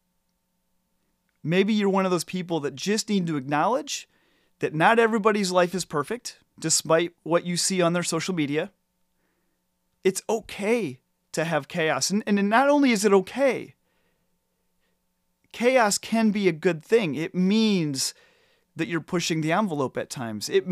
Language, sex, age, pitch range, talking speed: English, male, 30-49, 130-185 Hz, 155 wpm